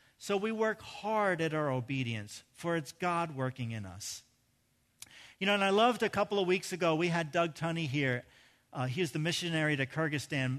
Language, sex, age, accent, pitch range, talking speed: English, male, 40-59, American, 135-195 Hz, 200 wpm